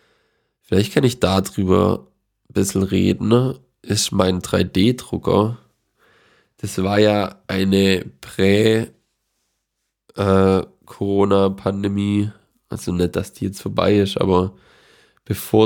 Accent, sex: German, male